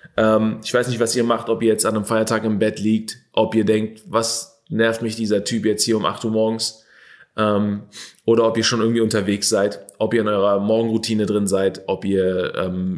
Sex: male